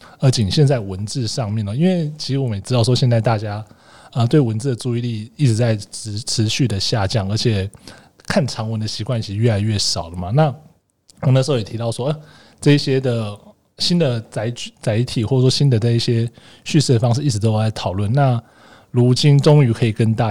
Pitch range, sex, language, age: 110-140 Hz, male, Chinese, 20-39